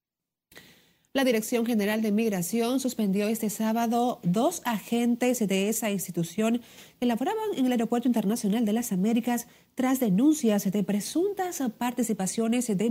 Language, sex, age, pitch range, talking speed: Spanish, female, 40-59, 195-235 Hz, 130 wpm